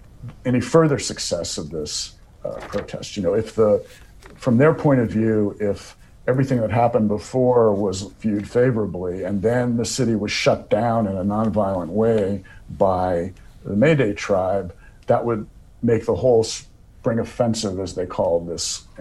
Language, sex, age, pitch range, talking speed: English, male, 60-79, 95-120 Hz, 160 wpm